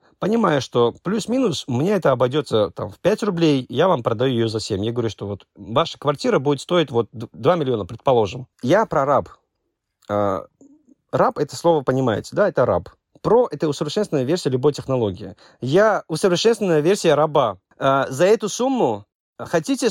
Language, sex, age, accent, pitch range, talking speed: Russian, male, 30-49, native, 130-195 Hz, 155 wpm